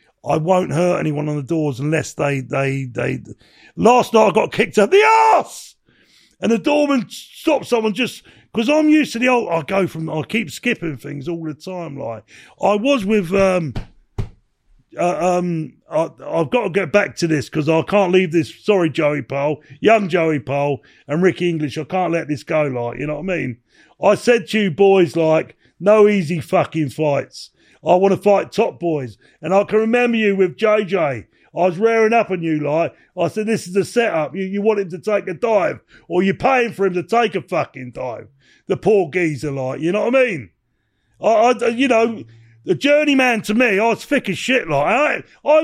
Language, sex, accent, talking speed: English, male, British, 210 wpm